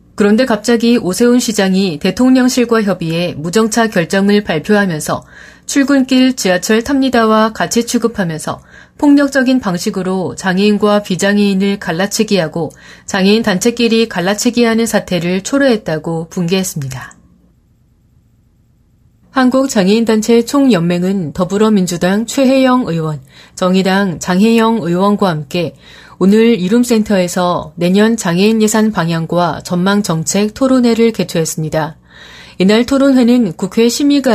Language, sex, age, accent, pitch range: Korean, female, 30-49, native, 175-230 Hz